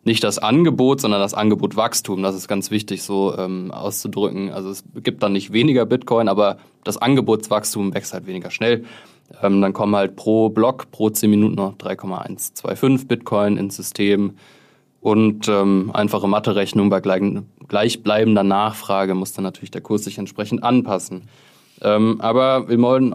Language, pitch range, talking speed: German, 100-120 Hz, 160 wpm